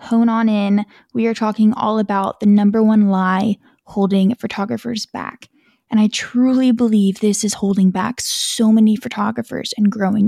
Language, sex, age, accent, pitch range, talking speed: English, female, 20-39, American, 205-235 Hz, 165 wpm